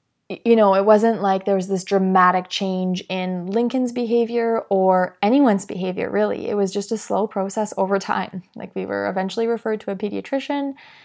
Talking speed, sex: 180 wpm, female